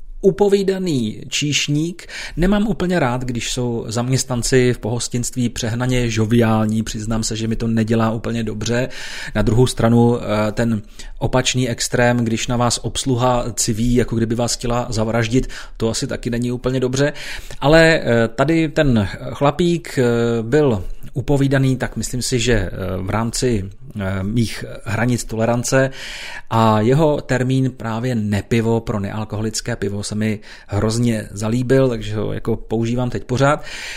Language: Czech